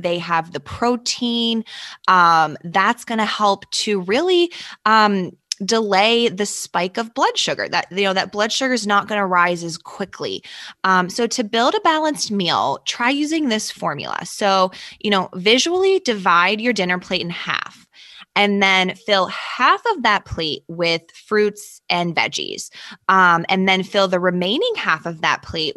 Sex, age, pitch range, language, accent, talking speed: female, 20-39, 180-235 Hz, English, American, 170 wpm